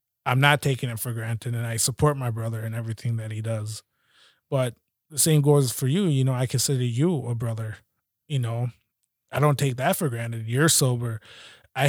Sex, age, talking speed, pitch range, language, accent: male, 20-39, 200 wpm, 120-155 Hz, English, American